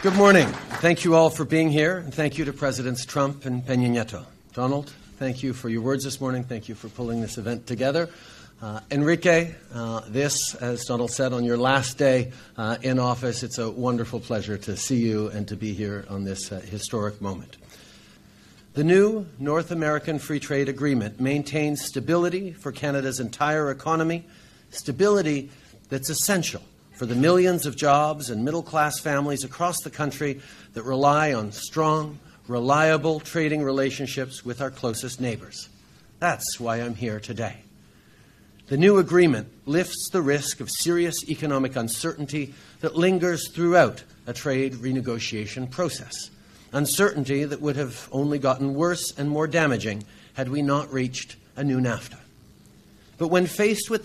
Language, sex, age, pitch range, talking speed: English, male, 50-69, 120-155 Hz, 160 wpm